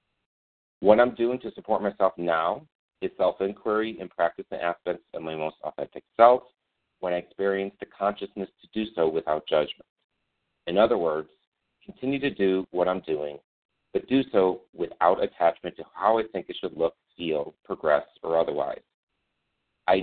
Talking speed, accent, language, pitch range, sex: 160 wpm, American, English, 90-110 Hz, male